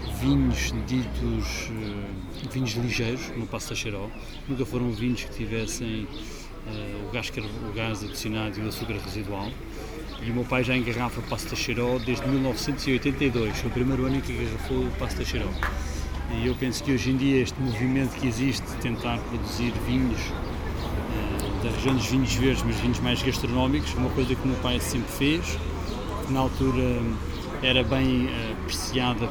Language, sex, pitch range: Portuguese, male, 110-130 Hz